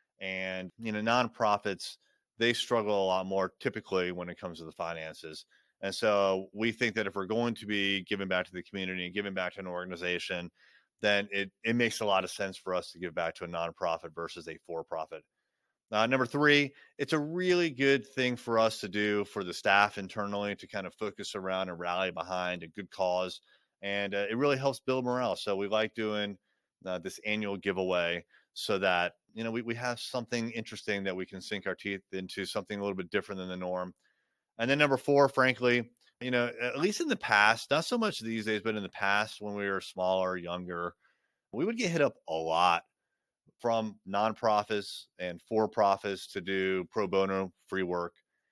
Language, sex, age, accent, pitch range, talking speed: English, male, 30-49, American, 95-115 Hz, 205 wpm